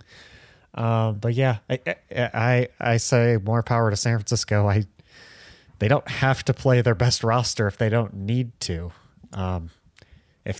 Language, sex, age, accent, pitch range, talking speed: English, male, 30-49, American, 105-130 Hz, 160 wpm